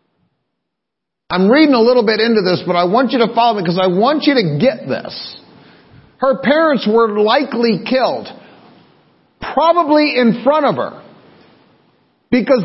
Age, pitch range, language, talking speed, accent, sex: 50-69, 195-255 Hz, English, 150 wpm, American, male